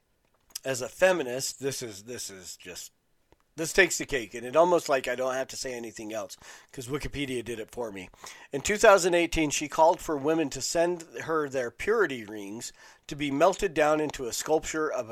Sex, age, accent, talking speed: male, 40-59, American, 195 wpm